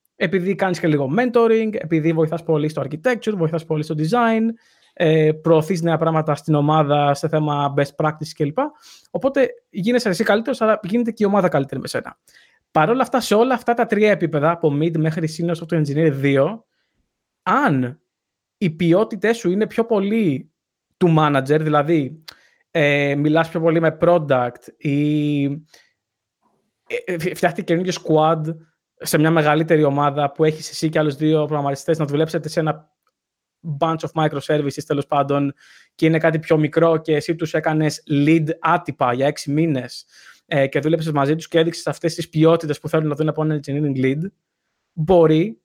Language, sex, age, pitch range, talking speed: Greek, male, 20-39, 150-185 Hz, 165 wpm